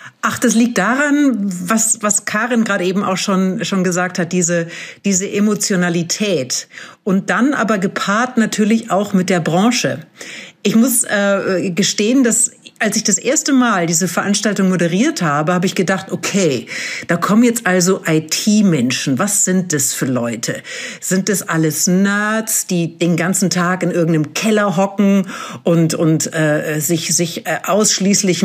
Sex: female